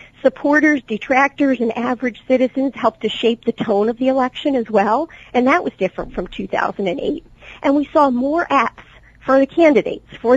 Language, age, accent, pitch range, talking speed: English, 50-69, American, 215-275 Hz, 175 wpm